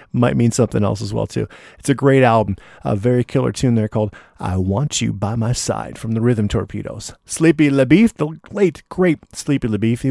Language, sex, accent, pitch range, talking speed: English, male, American, 115-150 Hz, 210 wpm